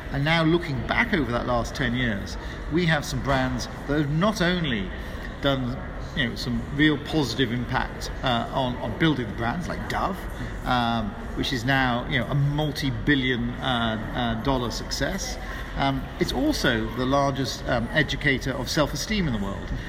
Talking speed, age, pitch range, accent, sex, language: 170 wpm, 50-69, 115-145 Hz, British, male, English